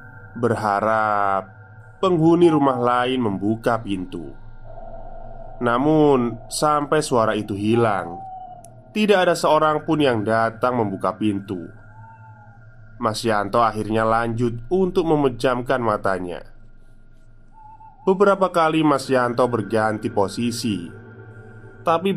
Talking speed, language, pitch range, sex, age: 90 wpm, Indonesian, 110-130 Hz, male, 20-39